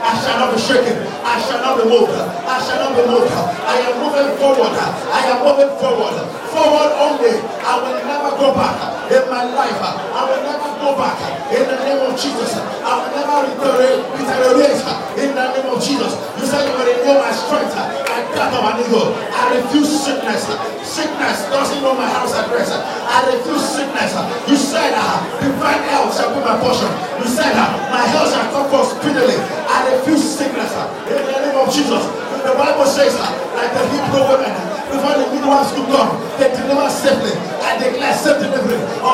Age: 40-59